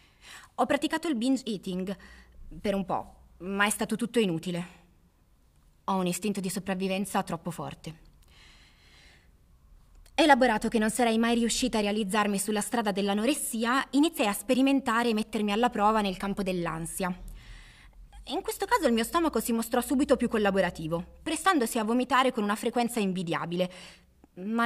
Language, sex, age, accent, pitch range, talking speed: Italian, female, 20-39, native, 175-230 Hz, 145 wpm